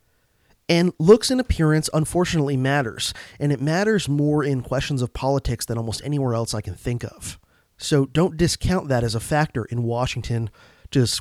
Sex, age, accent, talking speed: male, 30-49, American, 170 wpm